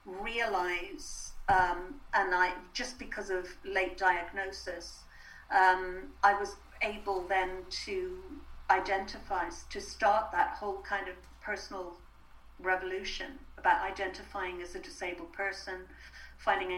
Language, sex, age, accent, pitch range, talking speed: English, female, 50-69, British, 185-270 Hz, 110 wpm